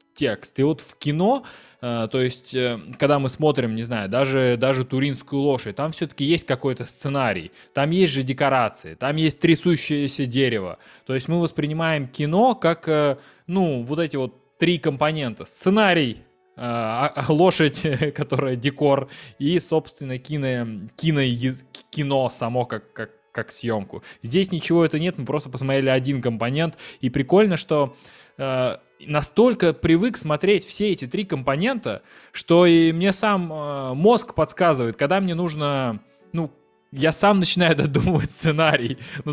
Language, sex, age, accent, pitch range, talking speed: Russian, male, 20-39, native, 135-170 Hz, 135 wpm